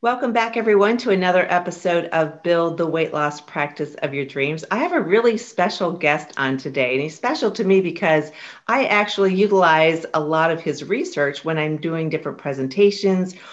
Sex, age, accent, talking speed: female, 40-59, American, 185 wpm